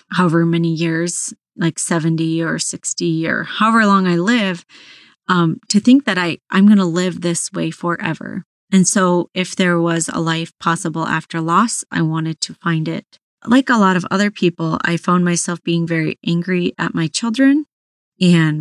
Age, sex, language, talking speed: 30-49, female, English, 175 wpm